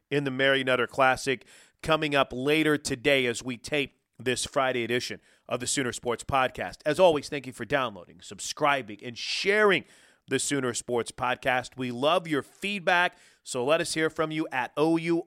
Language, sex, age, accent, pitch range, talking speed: English, male, 40-59, American, 120-155 Hz, 175 wpm